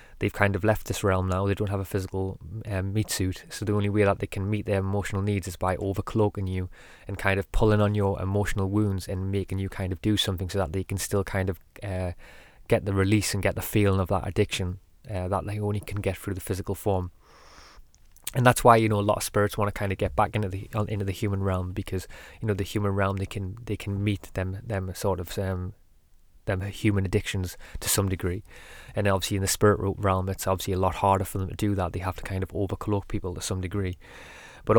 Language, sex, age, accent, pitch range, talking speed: English, male, 20-39, British, 95-105 Hz, 250 wpm